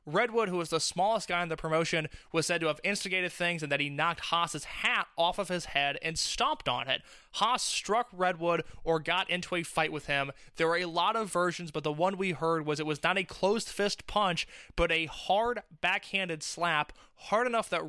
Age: 20-39